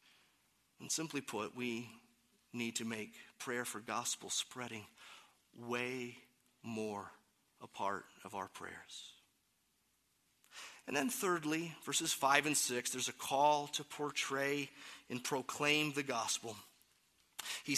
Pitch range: 145-235 Hz